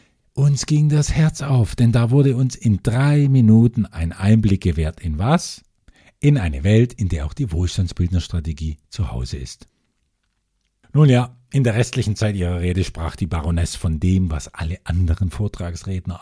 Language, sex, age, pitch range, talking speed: German, male, 50-69, 90-130 Hz, 165 wpm